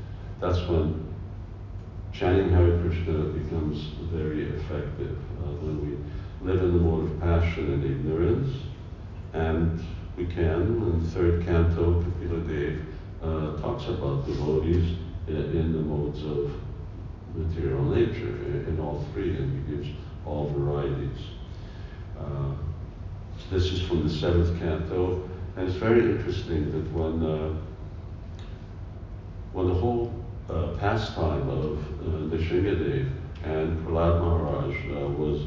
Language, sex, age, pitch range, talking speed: English, male, 50-69, 80-95 Hz, 125 wpm